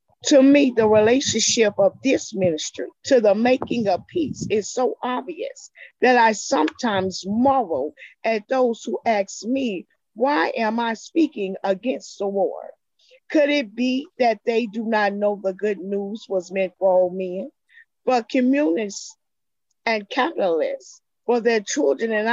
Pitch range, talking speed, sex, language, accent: 200-265 Hz, 150 wpm, female, English, American